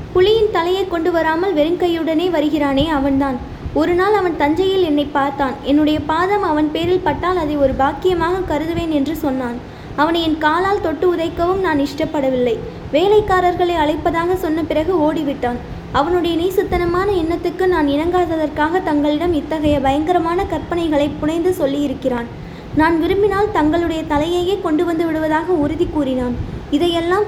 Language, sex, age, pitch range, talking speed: Tamil, female, 20-39, 295-355 Hz, 125 wpm